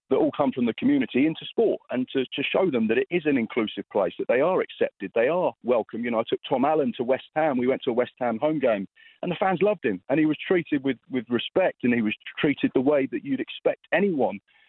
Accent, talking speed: British, 265 wpm